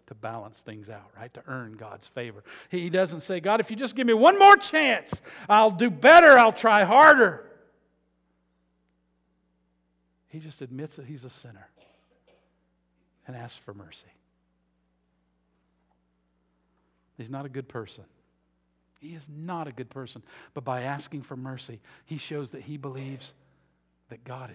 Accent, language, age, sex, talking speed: American, English, 50-69, male, 150 wpm